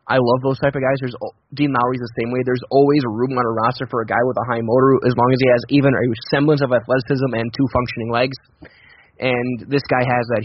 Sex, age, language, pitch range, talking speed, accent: male, 20-39, English, 120-135 Hz, 255 wpm, American